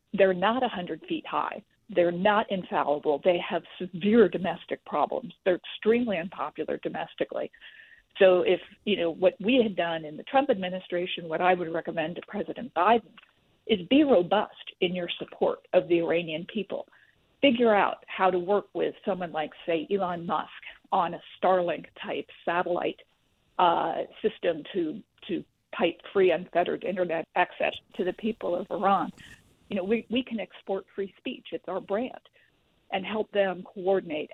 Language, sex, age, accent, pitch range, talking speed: English, female, 50-69, American, 175-230 Hz, 155 wpm